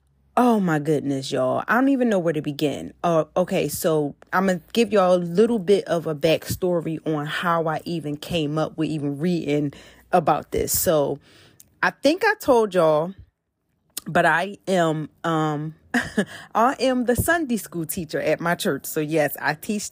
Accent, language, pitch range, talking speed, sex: American, English, 165-225 Hz, 180 wpm, female